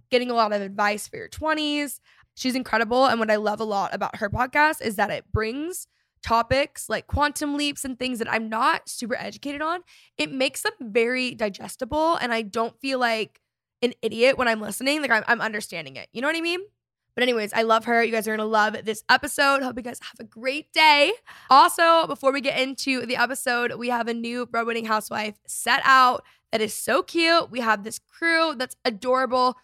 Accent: American